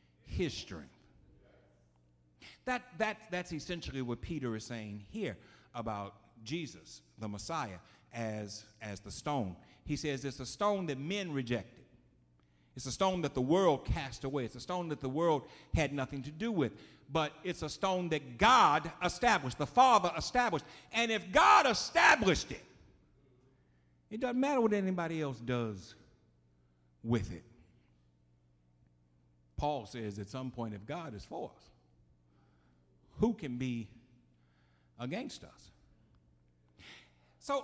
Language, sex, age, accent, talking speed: English, male, 50-69, American, 135 wpm